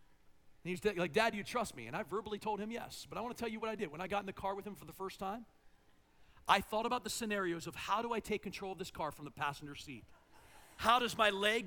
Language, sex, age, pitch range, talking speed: English, male, 40-59, 175-230 Hz, 295 wpm